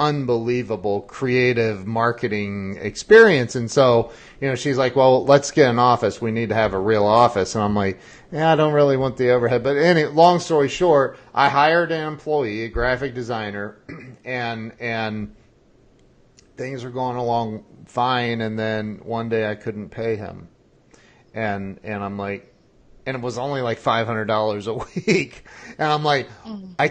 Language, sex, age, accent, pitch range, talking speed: English, male, 40-59, American, 115-145 Hz, 165 wpm